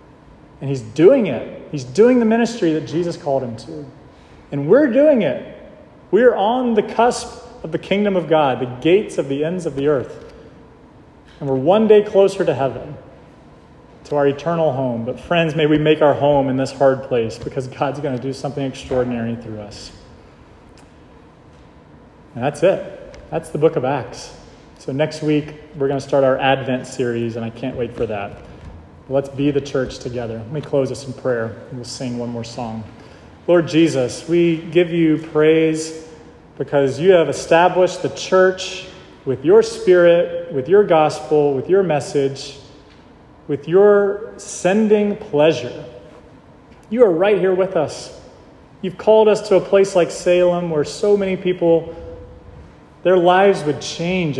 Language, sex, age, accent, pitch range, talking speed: English, male, 30-49, American, 130-175 Hz, 170 wpm